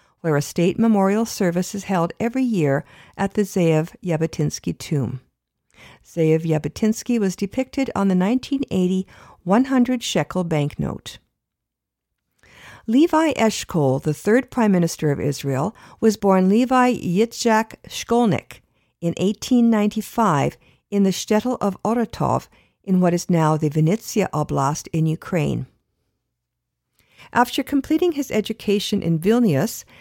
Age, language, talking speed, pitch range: 50-69, English, 120 wpm, 165-225 Hz